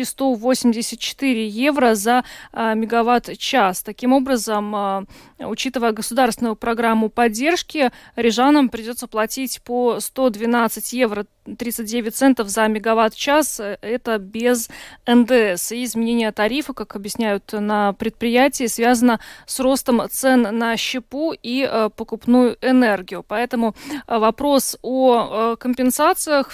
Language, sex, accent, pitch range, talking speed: Russian, female, native, 215-255 Hz, 95 wpm